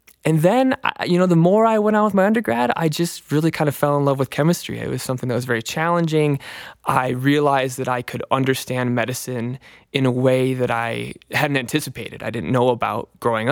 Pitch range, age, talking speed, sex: 120-145 Hz, 20-39, 215 wpm, male